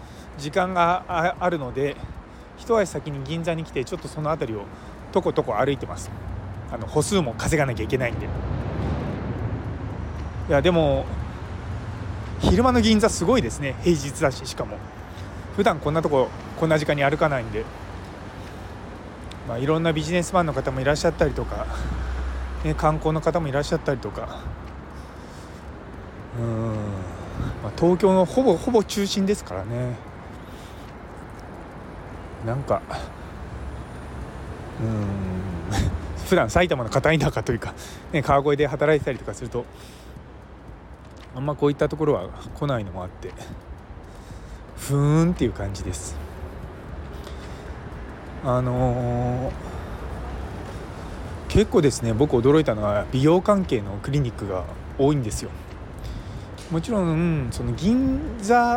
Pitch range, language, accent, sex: 90-150 Hz, Japanese, native, male